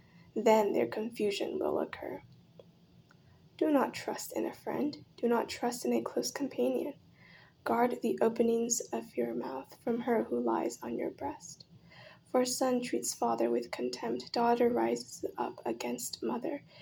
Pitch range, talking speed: 220-255 Hz, 150 wpm